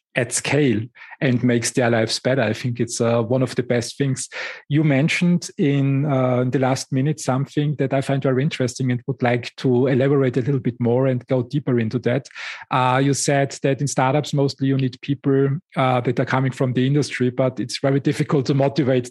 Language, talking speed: English, 210 wpm